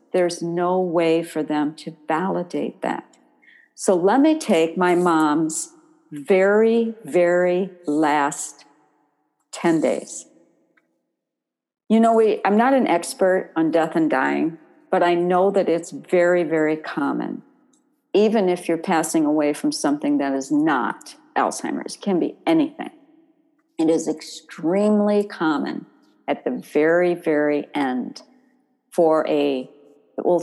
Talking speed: 125 wpm